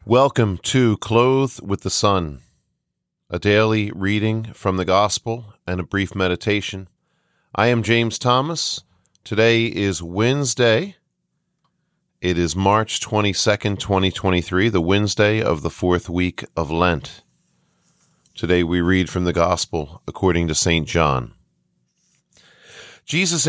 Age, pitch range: 40-59, 95-120 Hz